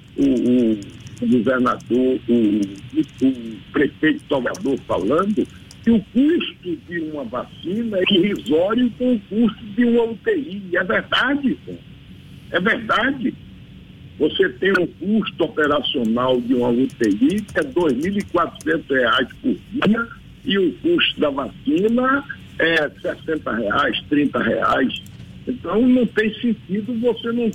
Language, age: Portuguese, 60-79